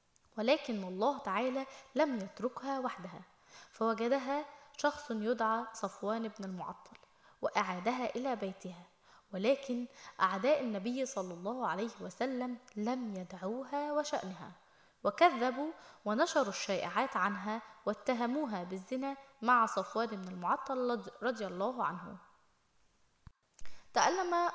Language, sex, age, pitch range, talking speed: Arabic, female, 10-29, 200-255 Hz, 95 wpm